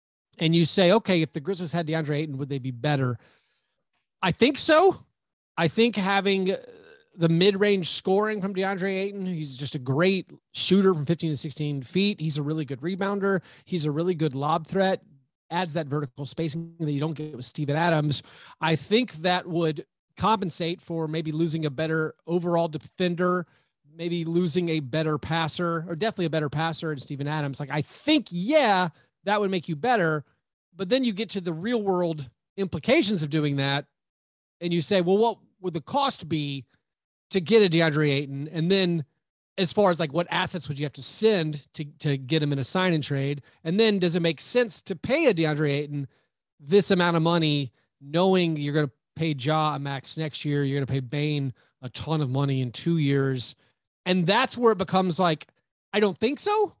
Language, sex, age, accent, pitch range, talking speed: English, male, 30-49, American, 150-190 Hz, 200 wpm